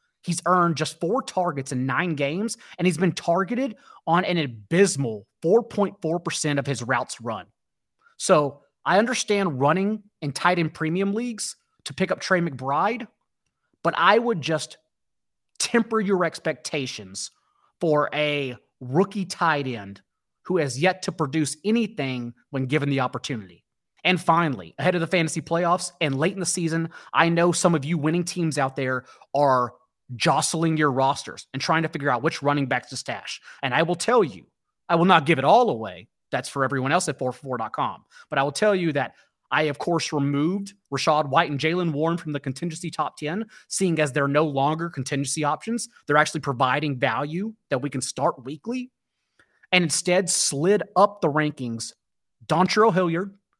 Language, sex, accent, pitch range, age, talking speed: English, male, American, 140-185 Hz, 30-49, 170 wpm